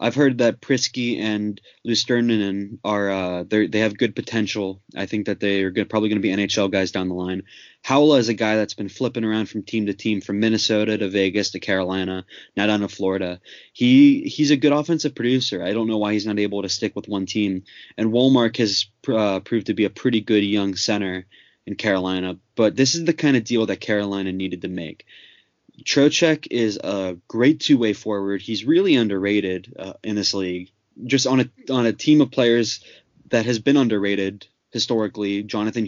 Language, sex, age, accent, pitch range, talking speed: English, male, 20-39, American, 100-120 Hz, 200 wpm